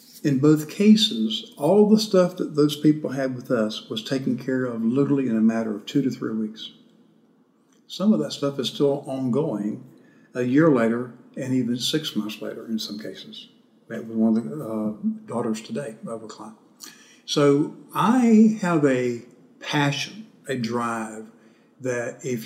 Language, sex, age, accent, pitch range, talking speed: English, male, 60-79, American, 125-185 Hz, 170 wpm